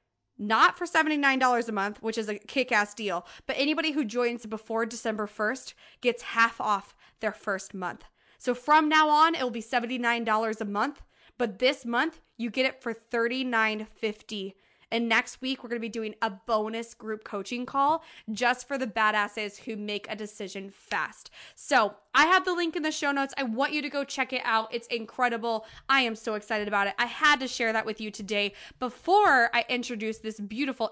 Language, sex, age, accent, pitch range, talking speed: English, female, 20-39, American, 220-280 Hz, 195 wpm